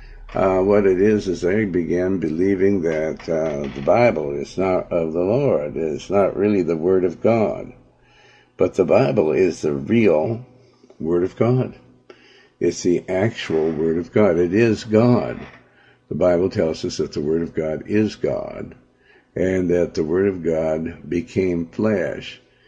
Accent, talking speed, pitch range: American, 160 wpm, 80-100 Hz